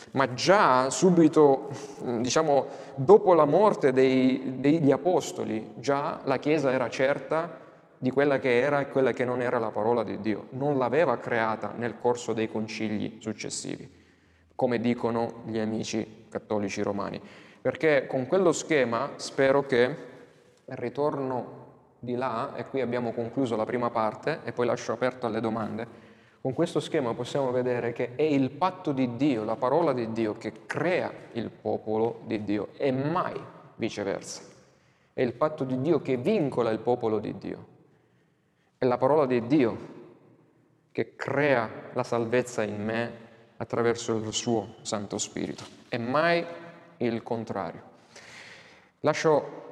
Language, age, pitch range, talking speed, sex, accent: Italian, 20-39, 115-135 Hz, 145 wpm, male, native